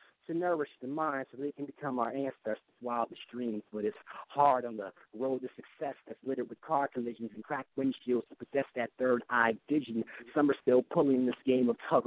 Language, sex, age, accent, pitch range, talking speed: English, male, 50-69, American, 120-155 Hz, 215 wpm